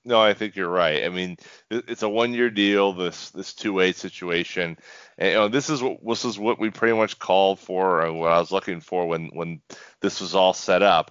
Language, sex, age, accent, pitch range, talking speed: English, male, 30-49, American, 85-105 Hz, 225 wpm